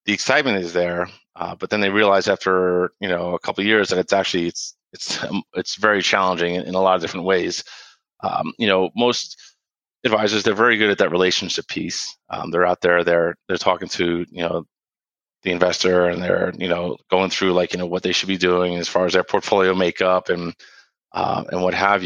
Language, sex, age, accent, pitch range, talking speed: English, male, 30-49, American, 90-95 Hz, 220 wpm